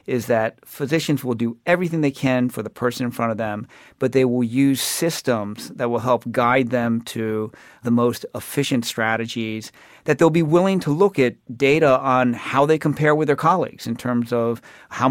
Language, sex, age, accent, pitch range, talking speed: English, male, 40-59, American, 120-140 Hz, 195 wpm